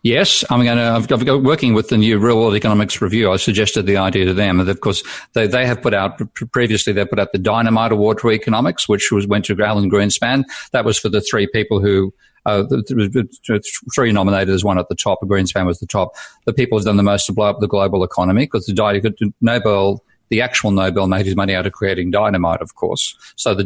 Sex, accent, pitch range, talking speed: male, Australian, 95-110 Hz, 240 wpm